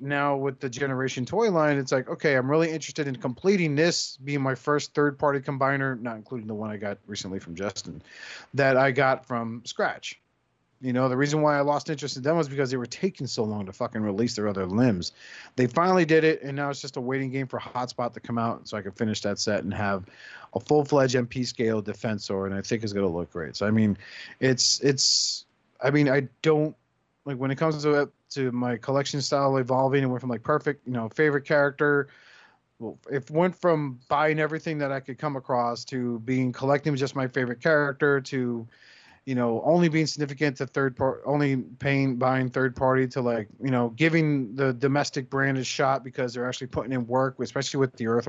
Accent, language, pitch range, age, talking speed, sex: American, English, 120-145 Hz, 30-49, 215 wpm, male